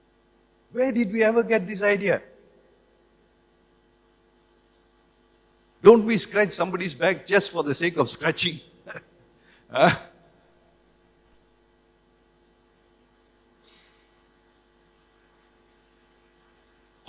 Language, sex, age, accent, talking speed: English, male, 60-79, Indian, 65 wpm